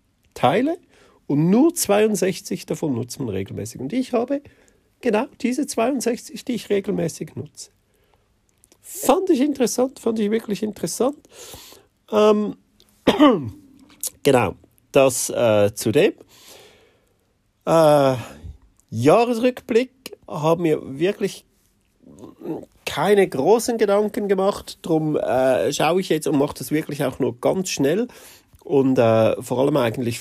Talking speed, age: 115 wpm, 40-59